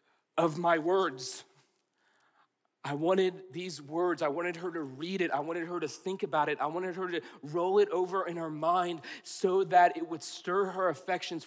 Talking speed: 195 wpm